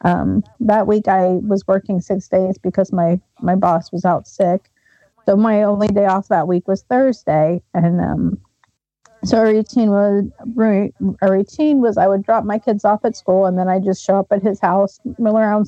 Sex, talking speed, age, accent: female, 195 wpm, 40-59, American